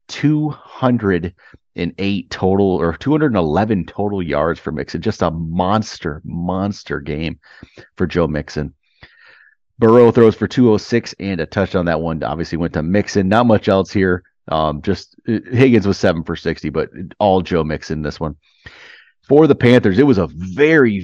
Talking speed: 155 wpm